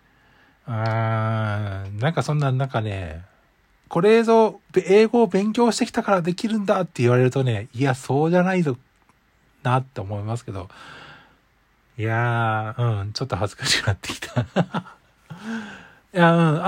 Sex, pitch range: male, 115-180 Hz